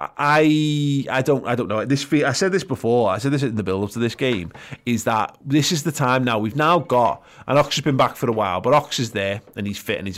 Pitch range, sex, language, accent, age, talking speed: 110-140 Hz, male, English, British, 30-49, 275 wpm